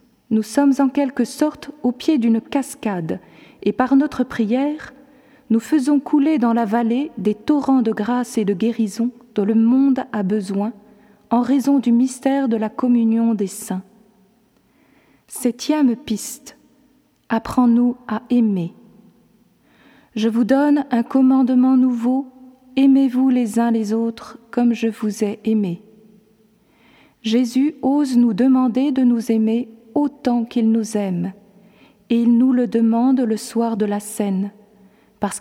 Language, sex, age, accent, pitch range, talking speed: French, female, 40-59, French, 215-255 Hz, 140 wpm